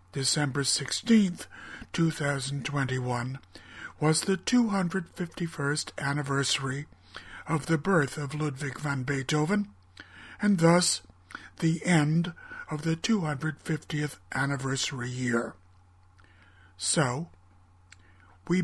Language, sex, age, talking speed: English, male, 60-79, 80 wpm